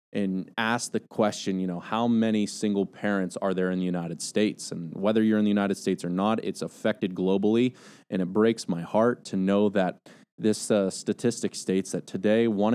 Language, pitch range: English, 90-110 Hz